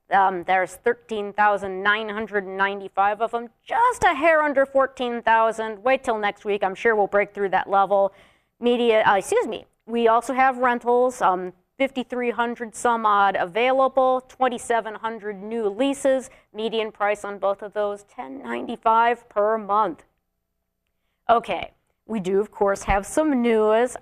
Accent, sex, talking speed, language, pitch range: American, female, 135 wpm, English, 200-250 Hz